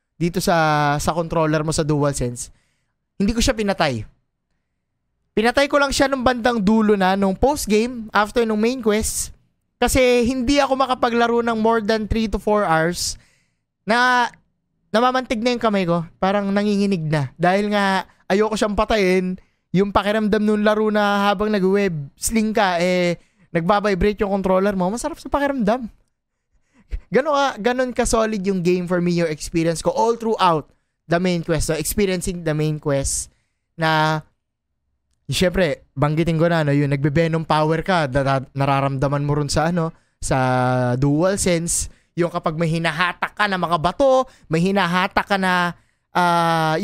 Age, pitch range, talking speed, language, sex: 20-39, 165-215 Hz, 155 wpm, Filipino, male